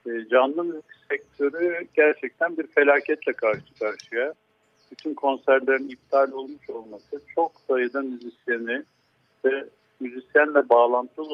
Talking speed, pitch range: 105 wpm, 135-165 Hz